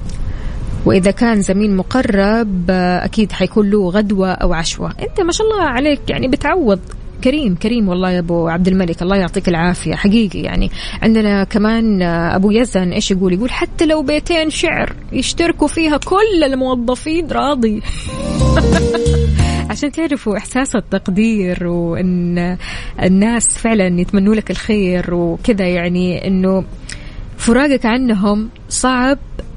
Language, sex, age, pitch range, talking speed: English, female, 20-39, 185-245 Hz, 125 wpm